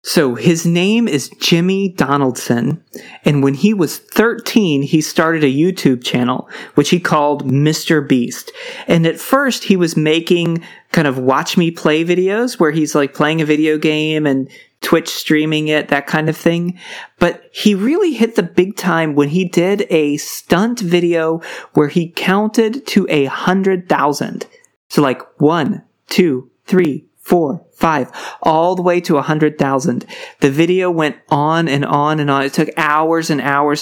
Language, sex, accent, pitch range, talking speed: English, male, American, 145-180 Hz, 170 wpm